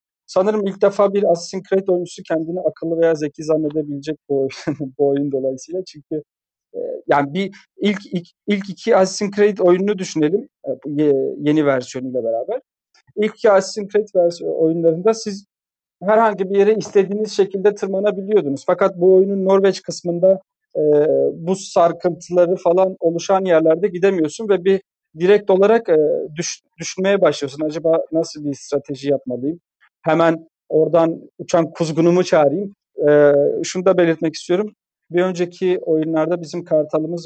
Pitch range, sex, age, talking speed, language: 155-200 Hz, male, 40-59, 135 wpm, Turkish